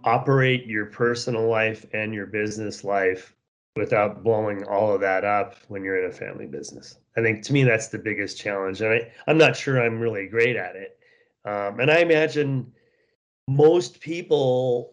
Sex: male